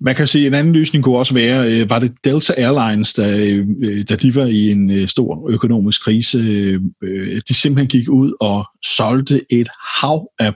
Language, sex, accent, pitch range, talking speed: Danish, male, native, 105-130 Hz, 180 wpm